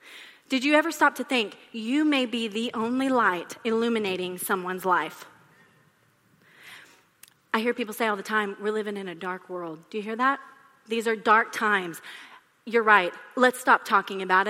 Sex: female